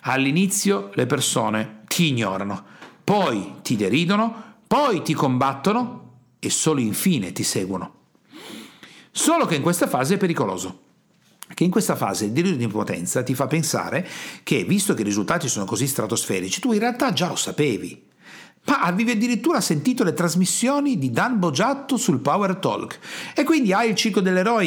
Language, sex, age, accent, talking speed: Italian, male, 50-69, native, 160 wpm